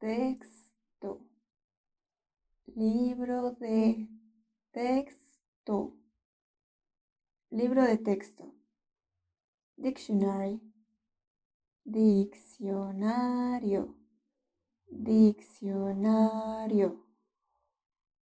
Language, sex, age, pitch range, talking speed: English, female, 20-39, 210-245 Hz, 35 wpm